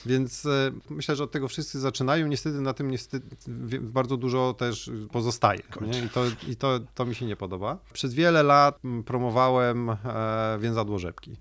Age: 30-49